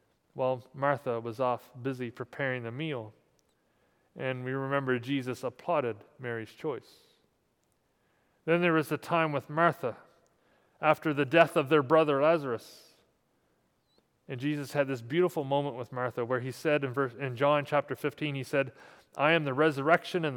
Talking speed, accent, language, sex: 155 wpm, American, English, male